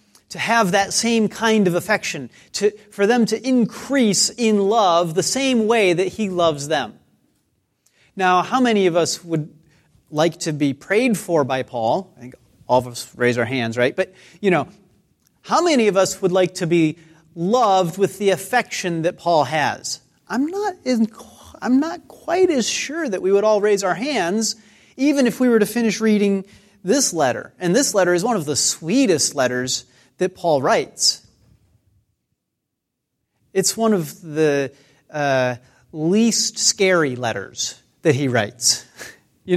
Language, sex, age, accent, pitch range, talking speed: English, male, 30-49, American, 140-215 Hz, 165 wpm